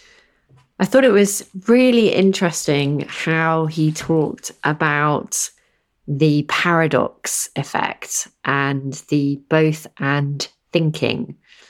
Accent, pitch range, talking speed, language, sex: British, 145-180 Hz, 90 wpm, English, female